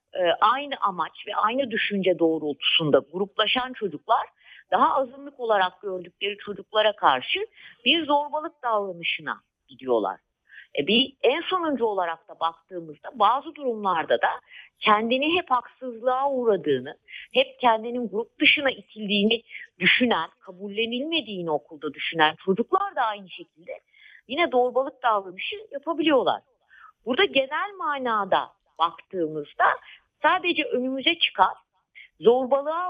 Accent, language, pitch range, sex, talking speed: native, Turkish, 185-295 Hz, female, 105 wpm